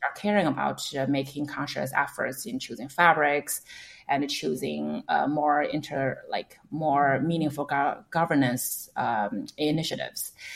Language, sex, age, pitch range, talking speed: English, female, 30-49, 140-170 Hz, 125 wpm